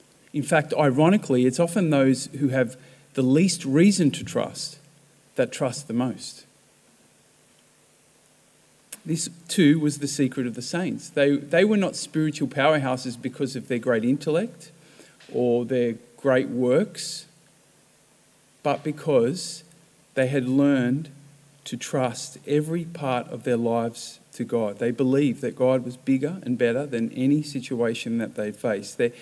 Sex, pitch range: male, 125-150 Hz